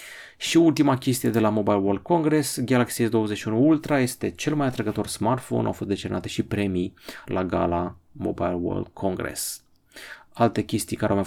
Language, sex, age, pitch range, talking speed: Romanian, male, 30-49, 100-130 Hz, 165 wpm